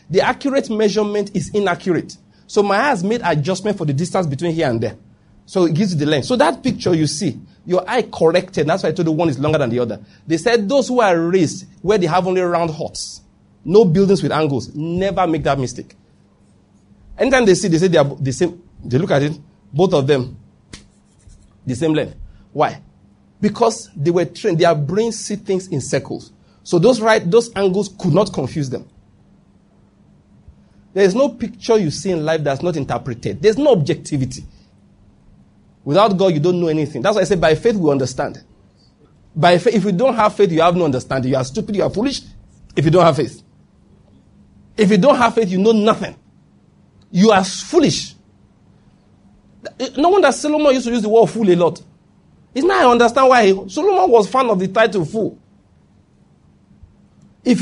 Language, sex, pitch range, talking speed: English, male, 150-220 Hz, 195 wpm